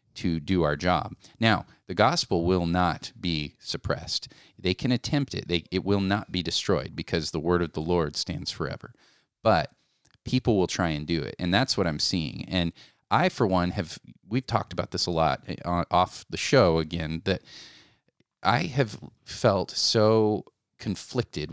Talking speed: 175 wpm